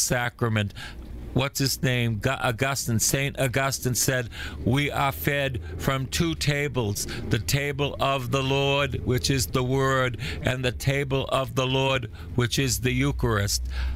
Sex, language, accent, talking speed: male, English, American, 140 wpm